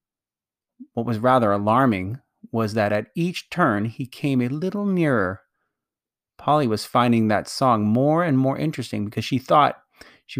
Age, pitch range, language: 30-49, 115-150 Hz, English